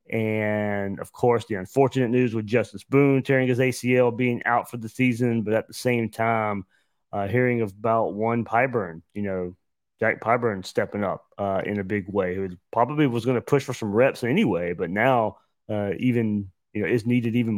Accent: American